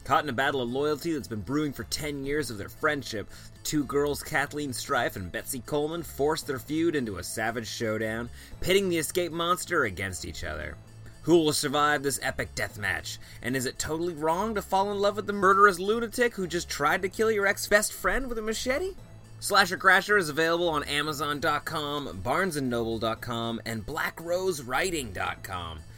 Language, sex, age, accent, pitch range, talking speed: English, male, 30-49, American, 110-170 Hz, 175 wpm